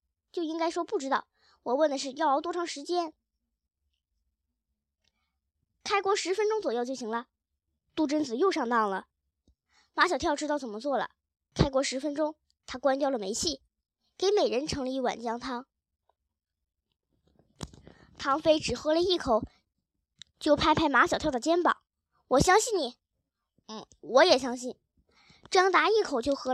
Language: Chinese